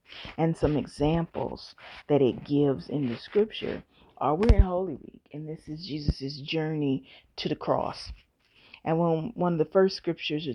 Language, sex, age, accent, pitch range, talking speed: English, female, 30-49, American, 135-170 Hz, 160 wpm